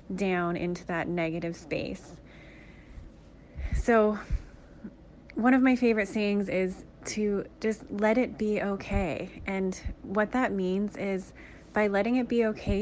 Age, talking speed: 20-39, 130 wpm